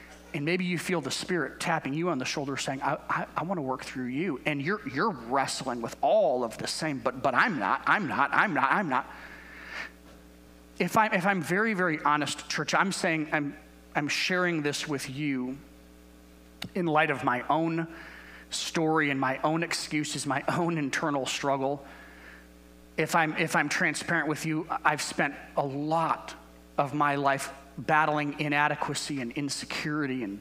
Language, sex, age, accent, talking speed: English, male, 30-49, American, 175 wpm